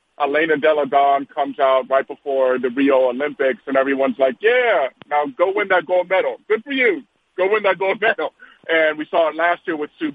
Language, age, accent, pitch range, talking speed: English, 40-59, American, 135-165 Hz, 205 wpm